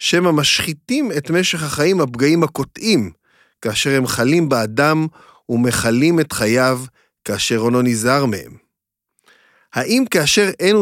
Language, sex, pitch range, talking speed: Hebrew, male, 120-165 Hz, 115 wpm